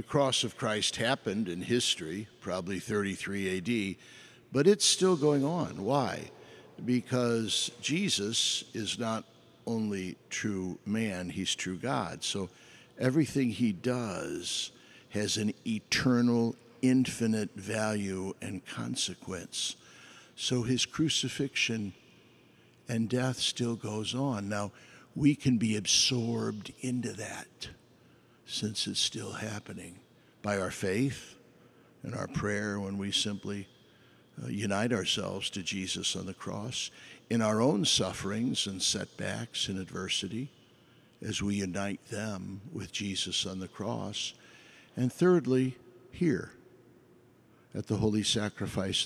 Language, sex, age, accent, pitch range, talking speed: English, male, 60-79, American, 100-125 Hz, 120 wpm